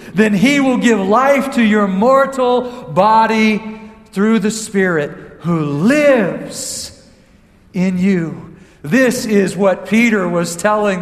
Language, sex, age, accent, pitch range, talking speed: English, male, 50-69, American, 155-210 Hz, 120 wpm